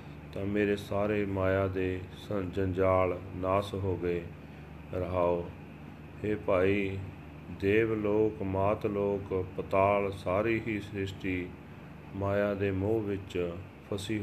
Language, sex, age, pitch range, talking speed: Punjabi, male, 30-49, 90-100 Hz, 105 wpm